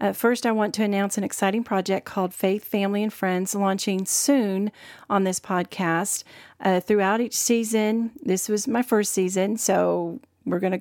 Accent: American